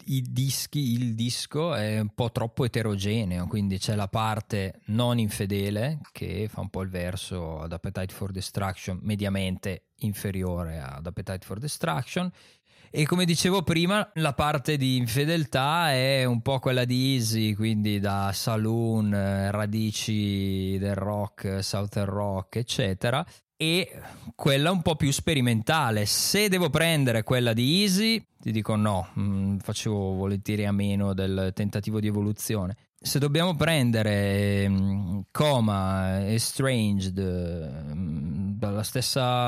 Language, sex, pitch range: Italian, male, 100-135 Hz